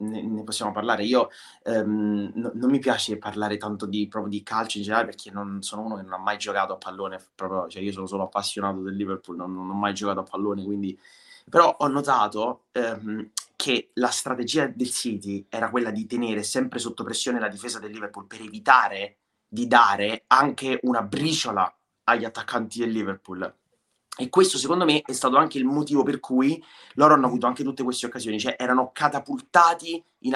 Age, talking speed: 20-39, 190 wpm